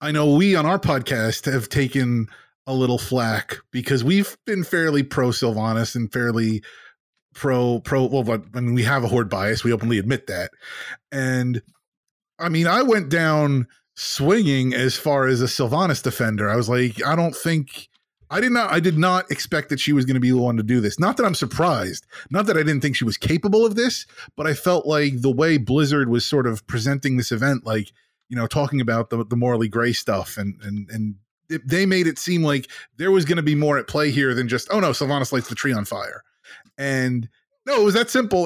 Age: 30-49